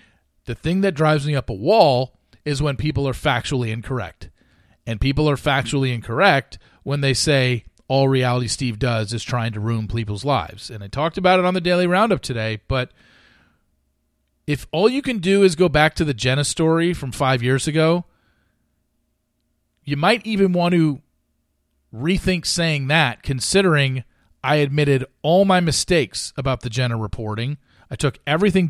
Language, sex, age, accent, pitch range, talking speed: English, male, 40-59, American, 120-175 Hz, 165 wpm